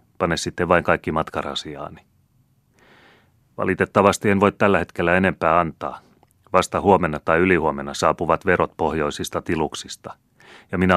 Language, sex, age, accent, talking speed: Finnish, male, 30-49, native, 120 wpm